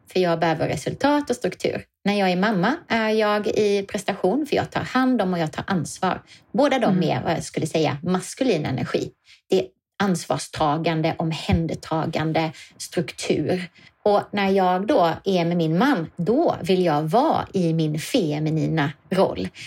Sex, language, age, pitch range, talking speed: female, Swedish, 30-49, 165-220 Hz, 160 wpm